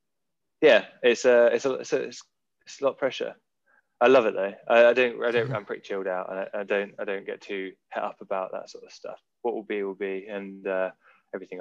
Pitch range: 95-120 Hz